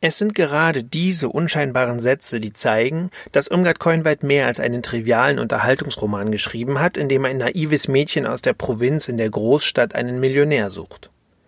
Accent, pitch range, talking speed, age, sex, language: German, 125-160 Hz, 165 wpm, 30-49, male, German